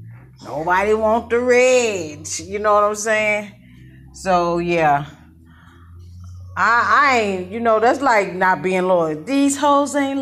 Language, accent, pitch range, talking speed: English, American, 155-245 Hz, 140 wpm